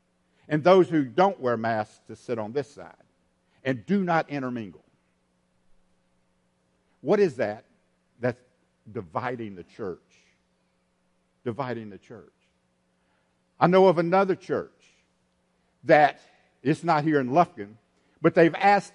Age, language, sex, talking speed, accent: 50-69, English, male, 125 wpm, American